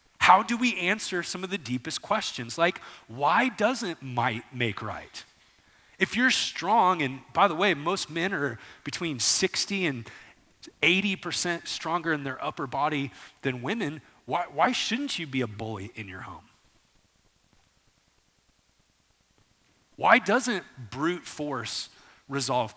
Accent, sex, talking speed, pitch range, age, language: American, male, 135 wpm, 125-185 Hz, 30-49, English